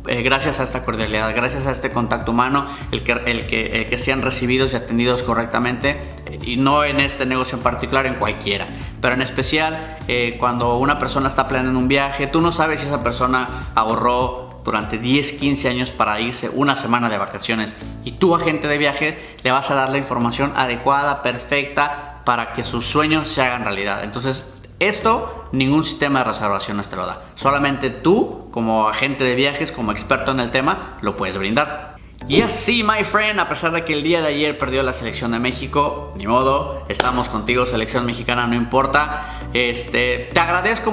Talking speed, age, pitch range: 190 wpm, 30-49, 120-145 Hz